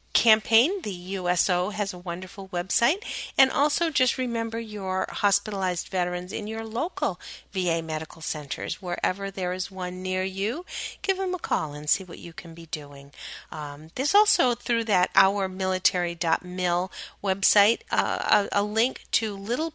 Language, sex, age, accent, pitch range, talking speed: English, female, 40-59, American, 170-210 Hz, 150 wpm